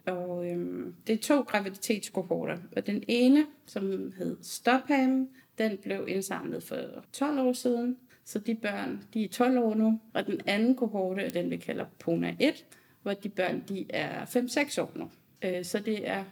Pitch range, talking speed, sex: 185-235 Hz, 175 wpm, female